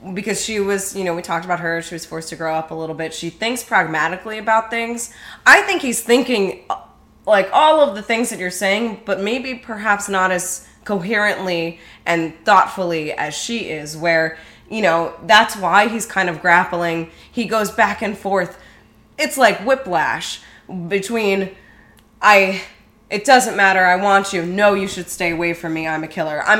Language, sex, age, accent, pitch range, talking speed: English, female, 20-39, American, 165-215 Hz, 185 wpm